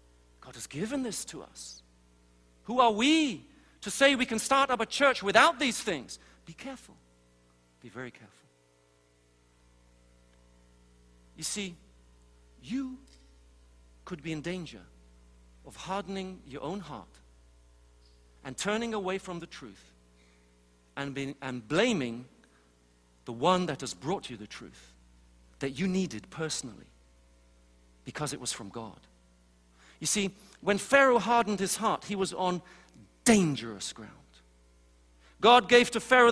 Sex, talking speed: male, 130 wpm